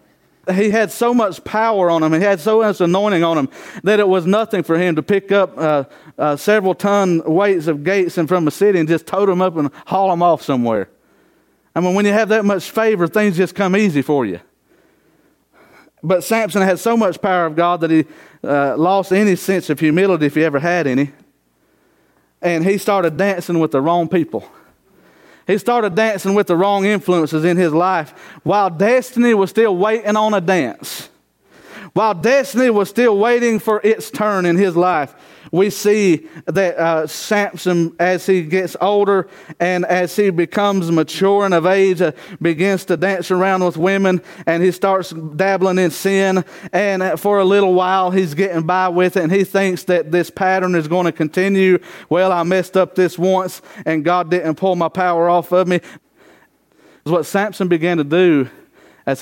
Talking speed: 190 wpm